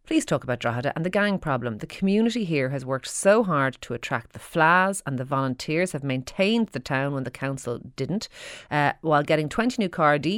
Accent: Irish